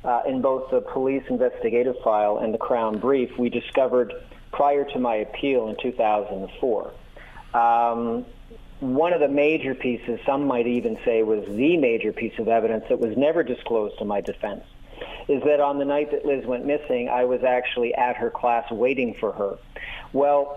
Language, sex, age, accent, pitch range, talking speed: English, male, 40-59, American, 115-140 Hz, 180 wpm